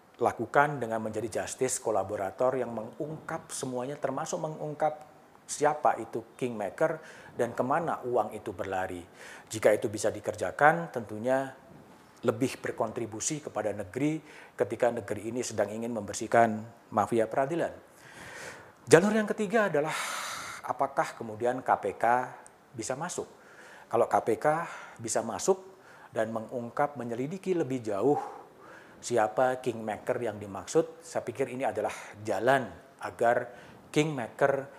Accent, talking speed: native, 110 wpm